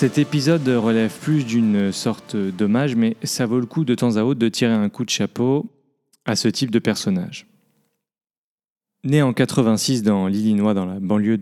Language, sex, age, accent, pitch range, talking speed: French, male, 30-49, French, 105-145 Hz, 185 wpm